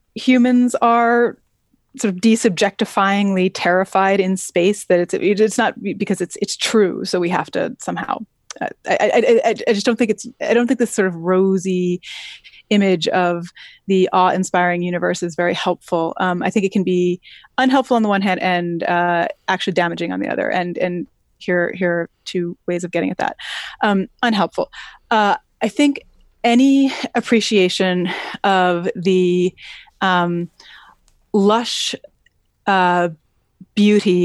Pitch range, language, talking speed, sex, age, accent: 180-220 Hz, English, 150 wpm, female, 30-49, American